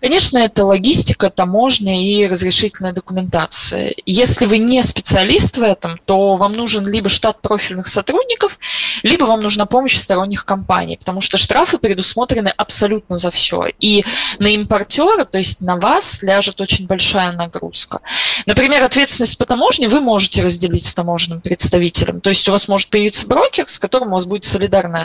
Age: 20-39